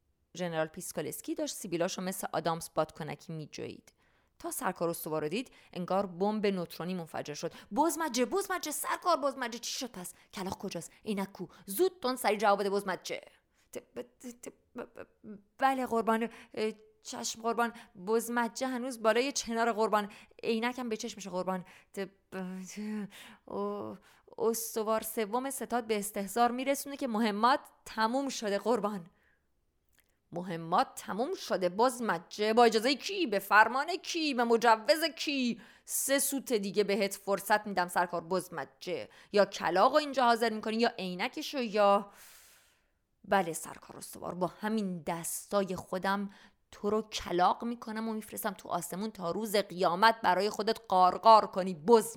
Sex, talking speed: female, 135 wpm